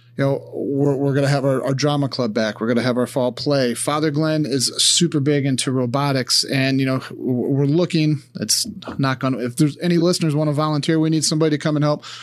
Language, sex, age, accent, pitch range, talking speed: English, male, 30-49, American, 130-155 Hz, 240 wpm